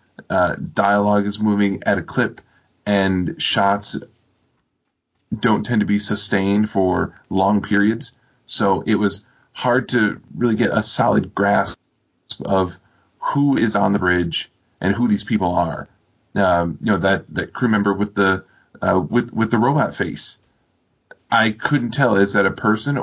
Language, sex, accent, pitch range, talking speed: English, male, American, 100-120 Hz, 155 wpm